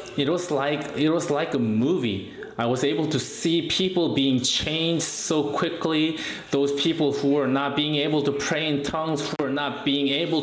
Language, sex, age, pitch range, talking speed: English, male, 20-39, 130-175 Hz, 195 wpm